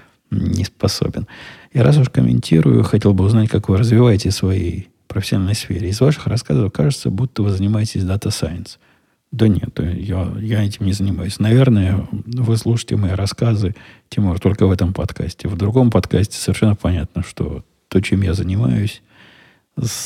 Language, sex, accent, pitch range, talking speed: Russian, male, native, 95-110 Hz, 155 wpm